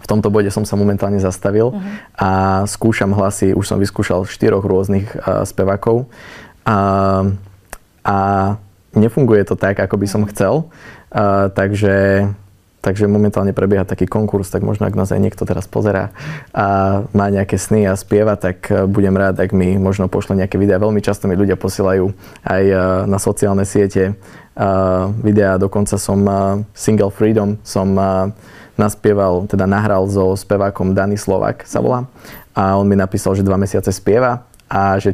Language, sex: Slovak, male